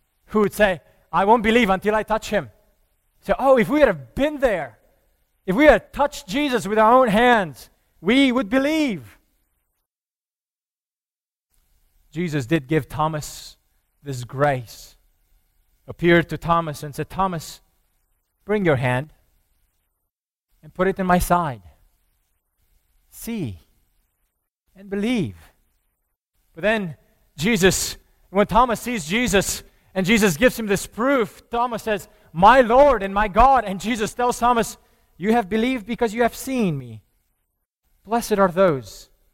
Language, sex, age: English, male, 30-49